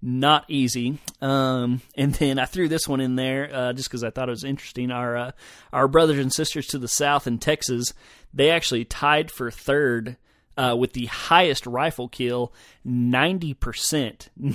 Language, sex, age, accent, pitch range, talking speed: English, male, 30-49, American, 120-145 Hz, 175 wpm